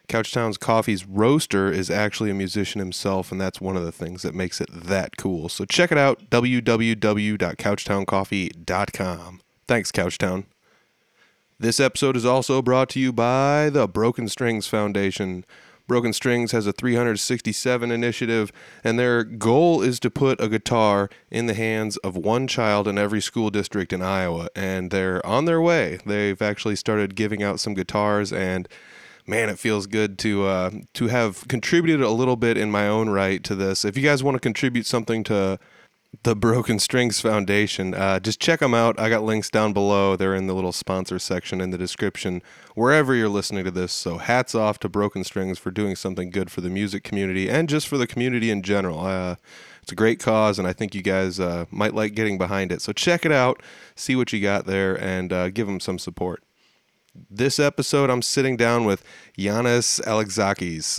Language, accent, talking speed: English, American, 190 wpm